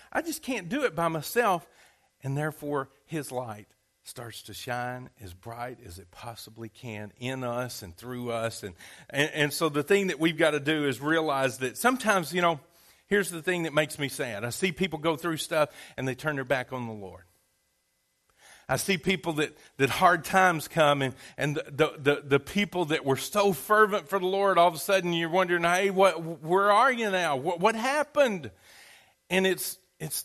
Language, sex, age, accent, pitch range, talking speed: English, male, 40-59, American, 125-190 Hz, 200 wpm